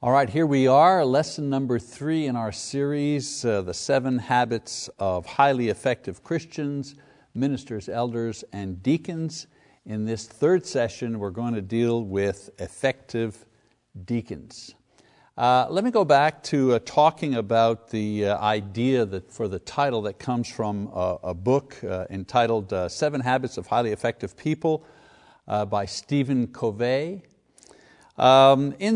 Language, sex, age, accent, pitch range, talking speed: English, male, 60-79, American, 115-145 Hz, 145 wpm